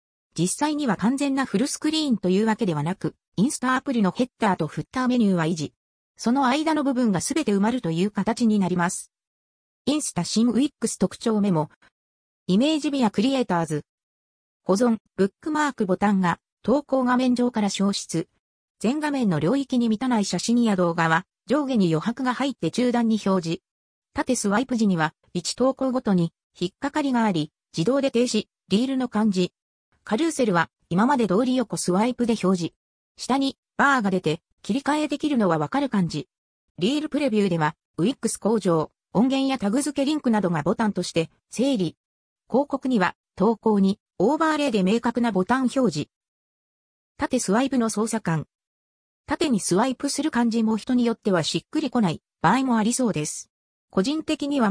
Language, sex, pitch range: Japanese, female, 180-255 Hz